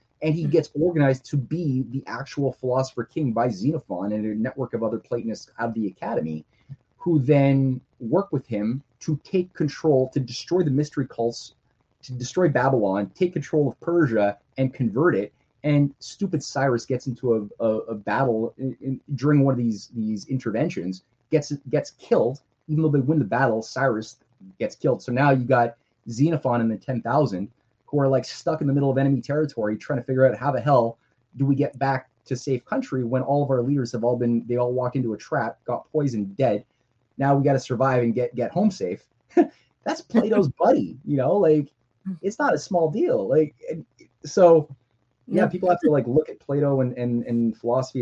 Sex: male